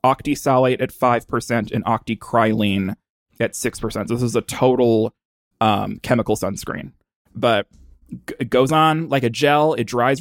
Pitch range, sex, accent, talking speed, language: 120-155 Hz, male, American, 140 wpm, English